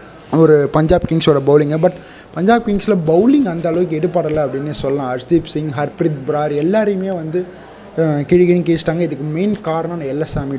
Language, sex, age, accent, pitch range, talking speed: Tamil, male, 20-39, native, 150-185 Hz, 140 wpm